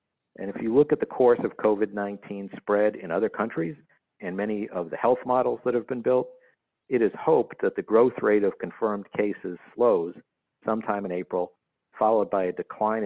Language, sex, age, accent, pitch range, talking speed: English, male, 50-69, American, 100-120 Hz, 190 wpm